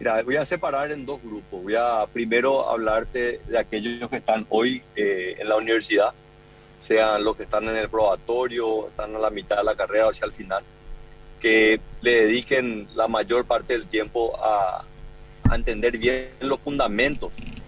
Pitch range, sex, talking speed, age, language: 110-130 Hz, male, 175 wpm, 30-49, Spanish